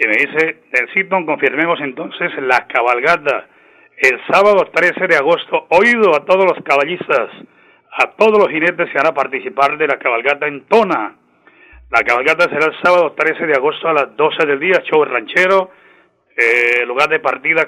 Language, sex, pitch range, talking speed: Spanish, male, 150-215 Hz, 170 wpm